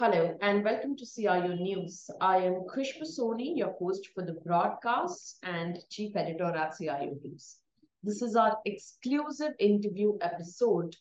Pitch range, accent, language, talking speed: 175-215 Hz, Indian, English, 145 wpm